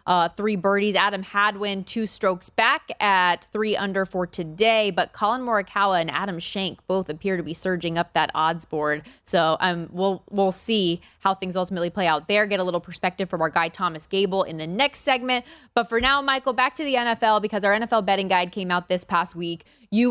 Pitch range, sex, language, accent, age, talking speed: 175-225 Hz, female, English, American, 20-39, 210 wpm